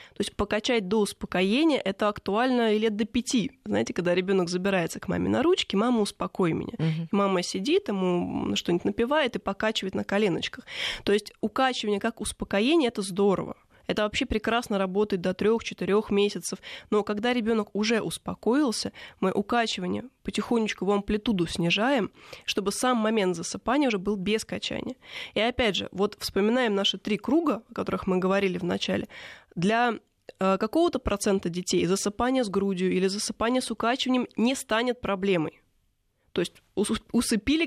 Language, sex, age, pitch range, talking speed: Russian, female, 20-39, 190-235 Hz, 155 wpm